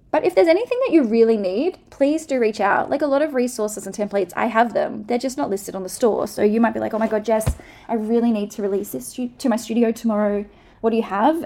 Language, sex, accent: English, female, Australian